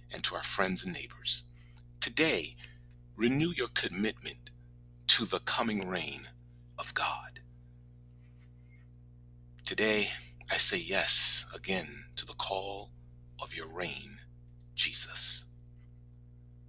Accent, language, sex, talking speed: American, English, male, 100 wpm